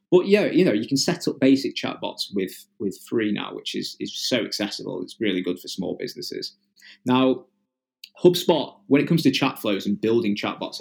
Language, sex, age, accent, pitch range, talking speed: English, male, 20-39, British, 100-125 Hz, 200 wpm